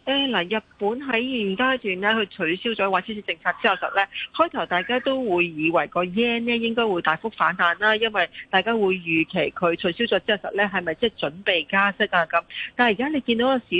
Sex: female